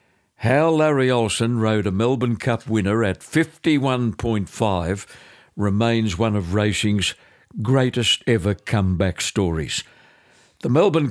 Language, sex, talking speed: English, male, 110 wpm